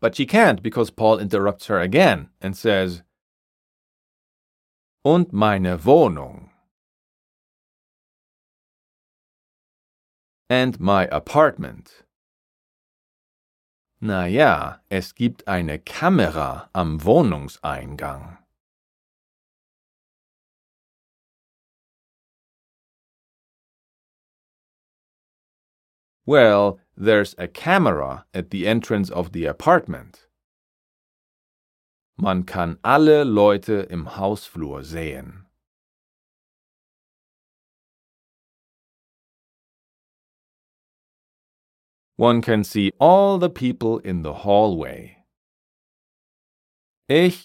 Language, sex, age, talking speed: German, male, 40-59, 65 wpm